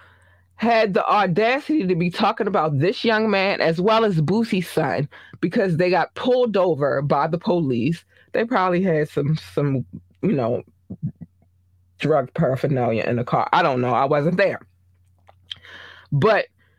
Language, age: English, 20-39